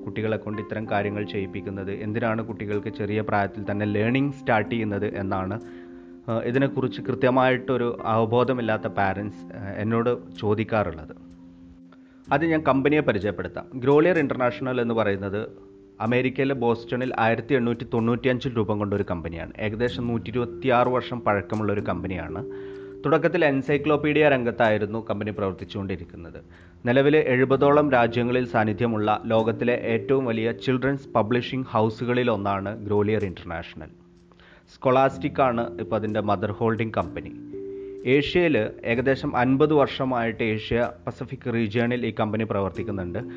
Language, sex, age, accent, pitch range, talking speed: Malayalam, male, 30-49, native, 100-125 Hz, 100 wpm